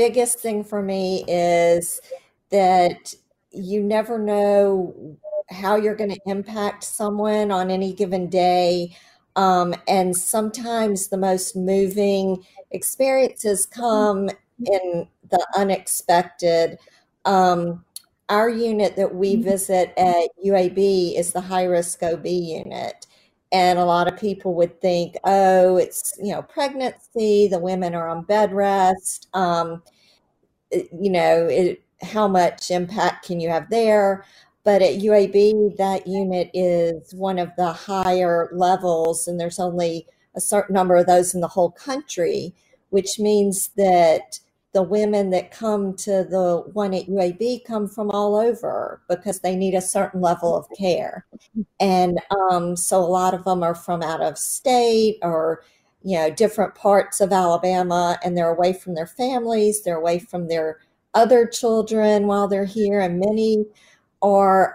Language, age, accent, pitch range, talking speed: English, 50-69, American, 180-210 Hz, 145 wpm